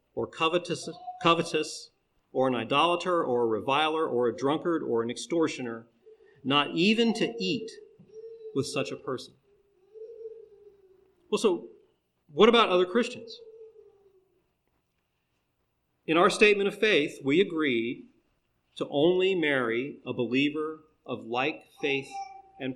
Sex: male